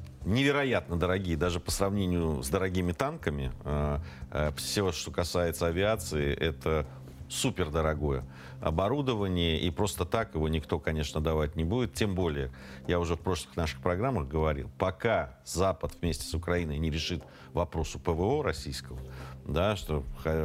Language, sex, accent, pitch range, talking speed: Russian, male, native, 75-90 Hz, 125 wpm